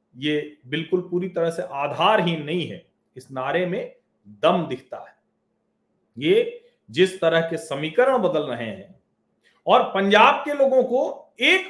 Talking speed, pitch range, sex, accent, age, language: 145 wpm, 180-270 Hz, male, native, 40-59, Hindi